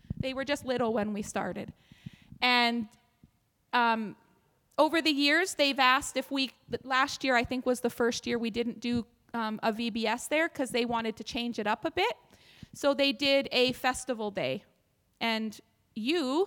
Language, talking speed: English, 175 wpm